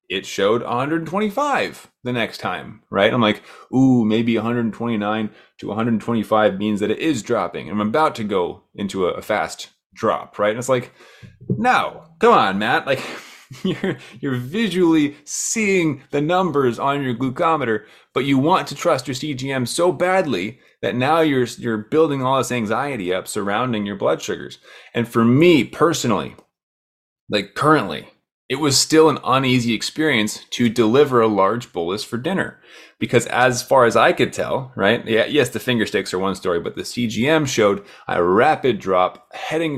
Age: 30-49